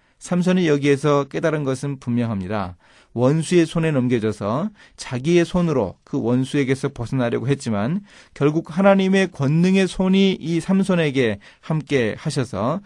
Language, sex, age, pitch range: Korean, male, 30-49, 110-165 Hz